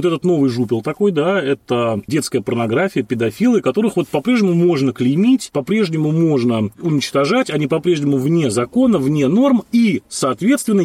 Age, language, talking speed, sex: 30-49, Russian, 145 wpm, male